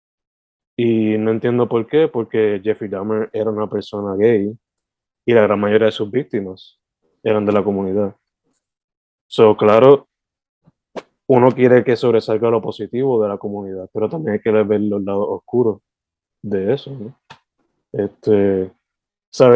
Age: 20-39